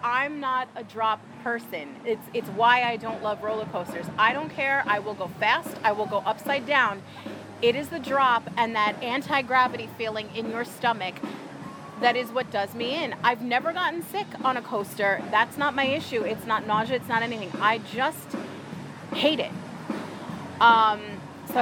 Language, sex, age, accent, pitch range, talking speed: English, female, 30-49, American, 225-280 Hz, 180 wpm